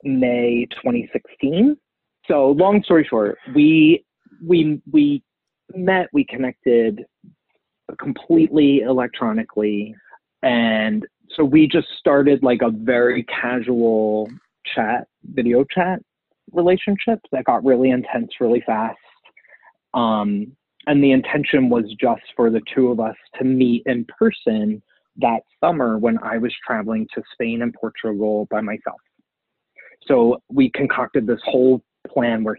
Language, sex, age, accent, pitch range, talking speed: English, male, 30-49, American, 115-175 Hz, 125 wpm